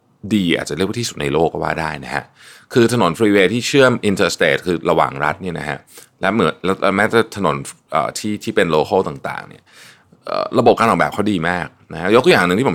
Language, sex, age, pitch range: Thai, male, 20-39, 80-115 Hz